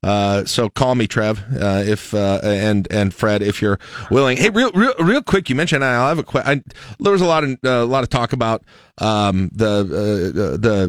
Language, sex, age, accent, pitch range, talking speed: English, male, 40-59, American, 115-155 Hz, 230 wpm